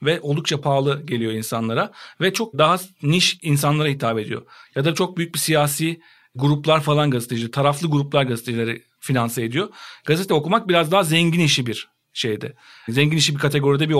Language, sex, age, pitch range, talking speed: Turkish, male, 50-69, 135-175 Hz, 165 wpm